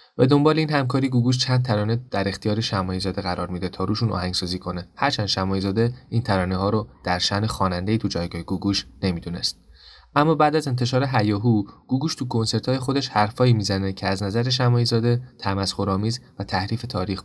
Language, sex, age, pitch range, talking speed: Persian, male, 20-39, 95-120 Hz, 175 wpm